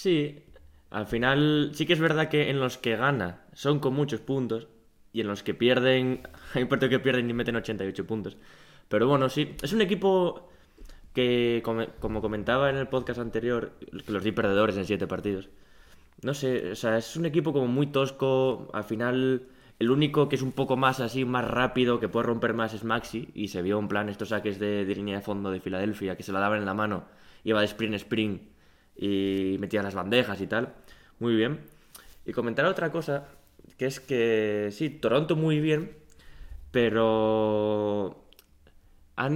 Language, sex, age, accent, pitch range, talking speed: Spanish, male, 10-29, Spanish, 100-130 Hz, 195 wpm